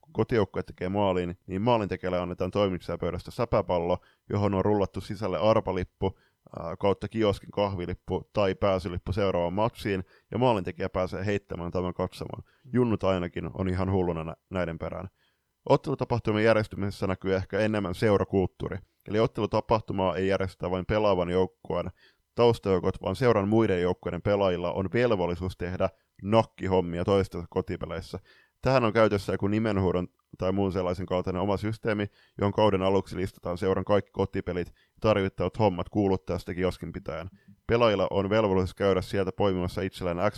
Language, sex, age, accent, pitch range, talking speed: Finnish, male, 20-39, native, 90-105 Hz, 135 wpm